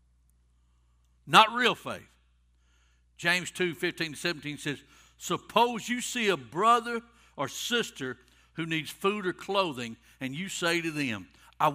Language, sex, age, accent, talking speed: English, male, 60-79, American, 140 wpm